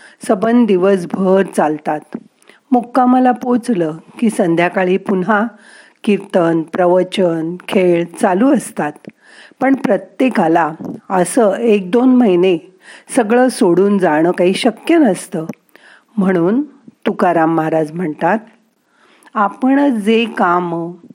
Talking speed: 90 wpm